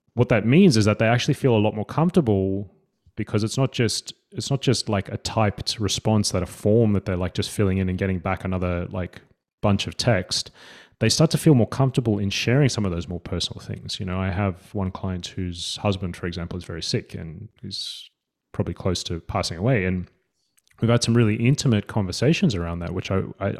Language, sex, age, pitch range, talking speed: English, male, 30-49, 95-120 Hz, 220 wpm